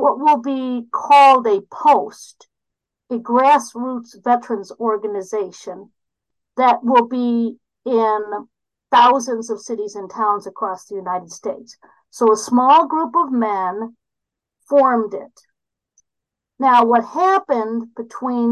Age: 50-69